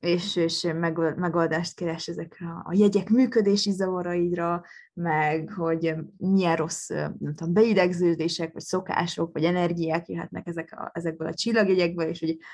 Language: Hungarian